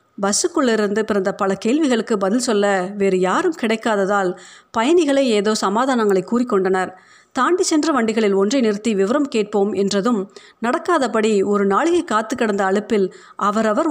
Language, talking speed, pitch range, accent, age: Tamil, 125 wpm, 200-260 Hz, native, 50-69